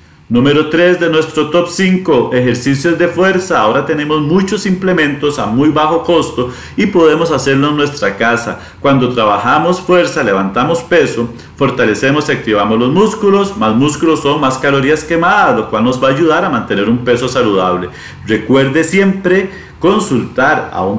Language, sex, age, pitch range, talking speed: Spanish, male, 40-59, 125-175 Hz, 155 wpm